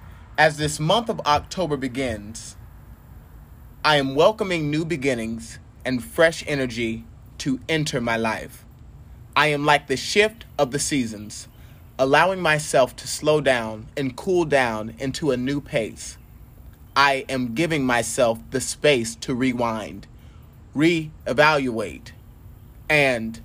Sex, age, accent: male, 30-49, American